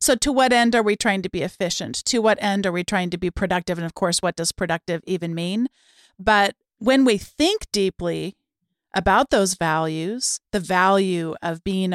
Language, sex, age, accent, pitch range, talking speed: English, female, 40-59, American, 180-225 Hz, 195 wpm